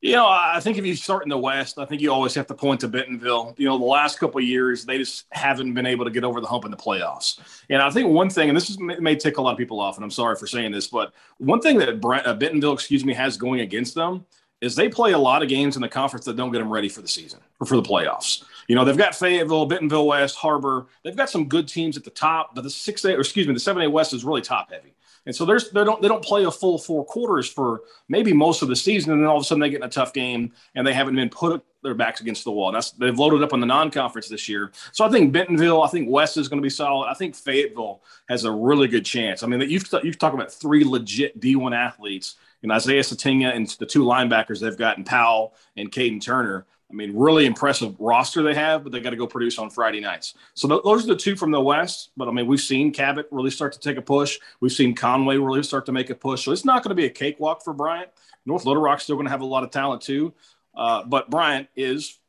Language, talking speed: English, 280 wpm